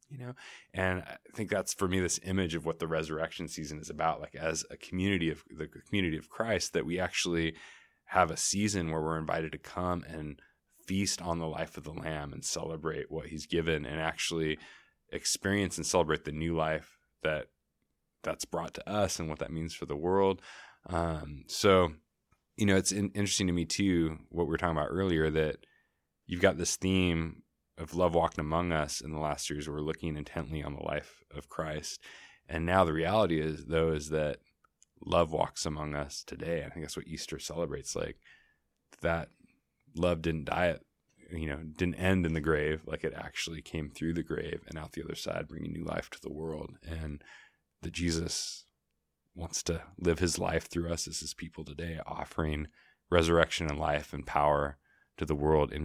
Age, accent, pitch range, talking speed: 20-39, American, 75-85 Hz, 190 wpm